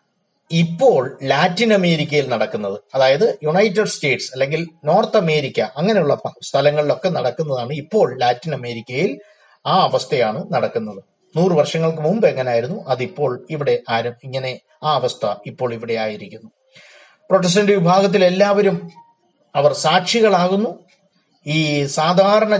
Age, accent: 30-49, native